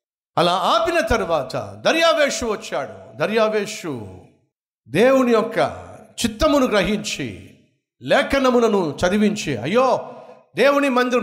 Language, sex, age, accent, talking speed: Telugu, male, 50-69, native, 80 wpm